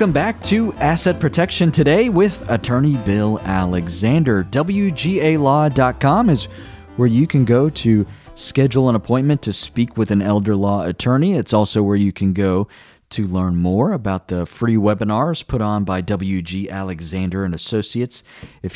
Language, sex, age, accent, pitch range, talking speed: English, male, 30-49, American, 95-130 Hz, 155 wpm